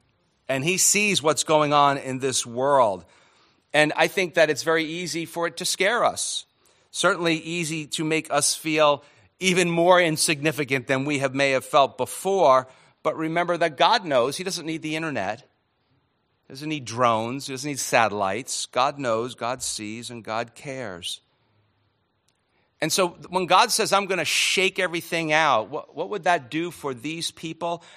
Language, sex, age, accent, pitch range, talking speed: English, male, 50-69, American, 130-165 Hz, 170 wpm